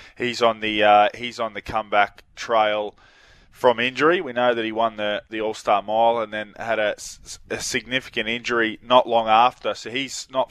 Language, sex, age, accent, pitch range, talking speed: English, male, 20-39, Australian, 105-125 Hz, 190 wpm